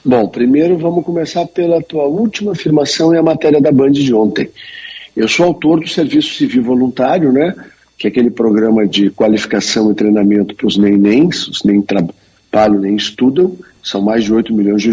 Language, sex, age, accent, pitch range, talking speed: Portuguese, male, 50-69, Brazilian, 110-150 Hz, 185 wpm